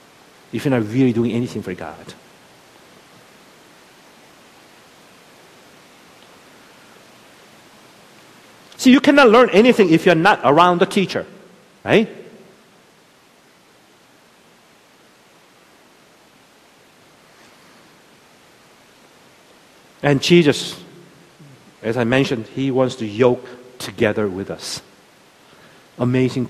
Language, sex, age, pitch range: Korean, male, 50-69, 110-145 Hz